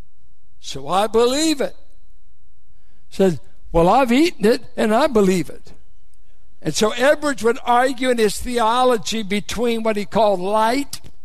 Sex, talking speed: male, 140 wpm